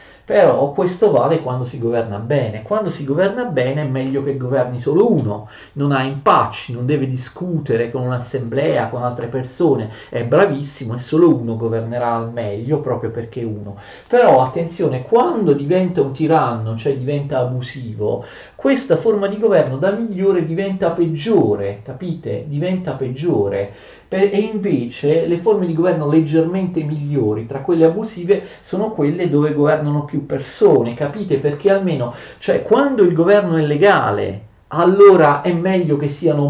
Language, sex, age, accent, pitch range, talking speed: Italian, male, 40-59, native, 125-180 Hz, 150 wpm